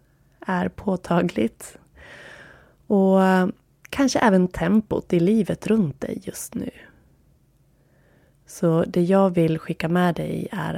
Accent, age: native, 20-39